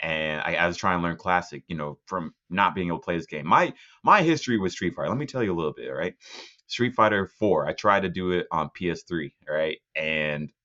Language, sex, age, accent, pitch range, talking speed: English, male, 30-49, American, 90-120 Hz, 260 wpm